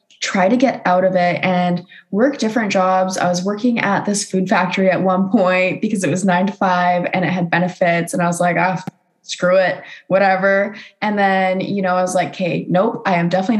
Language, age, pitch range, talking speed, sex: English, 10-29, 180-230 Hz, 225 wpm, female